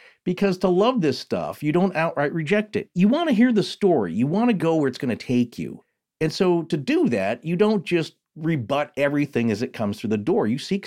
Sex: male